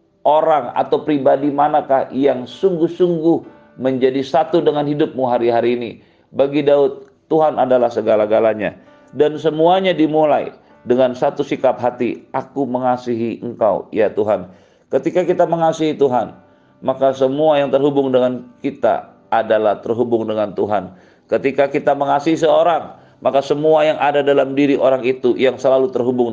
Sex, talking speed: male, 130 wpm